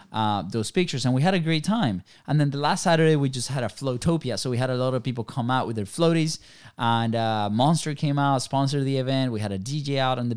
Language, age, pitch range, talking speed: English, 20-39, 110-140 Hz, 265 wpm